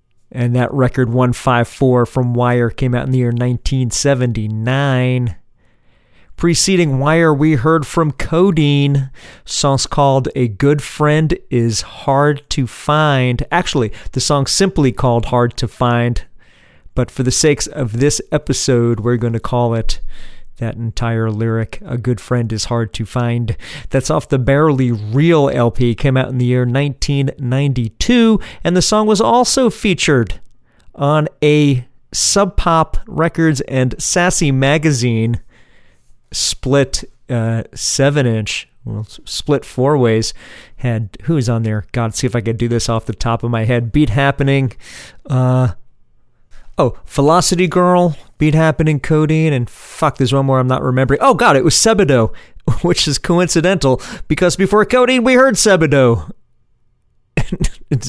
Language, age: English, 40-59